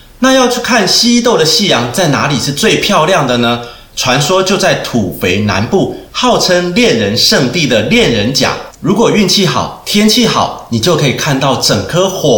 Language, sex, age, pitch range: Chinese, male, 30-49, 115-195 Hz